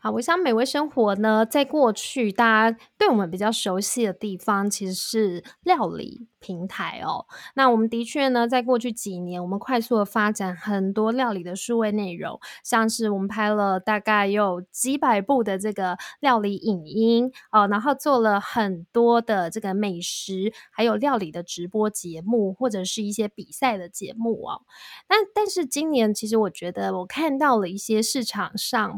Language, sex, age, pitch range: Chinese, female, 20-39, 200-240 Hz